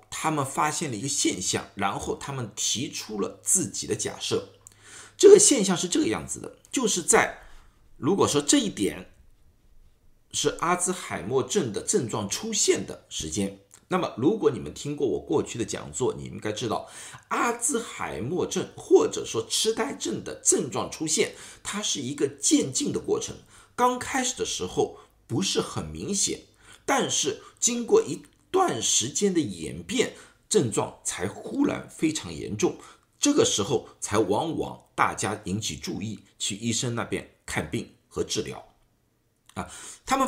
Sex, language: male, Chinese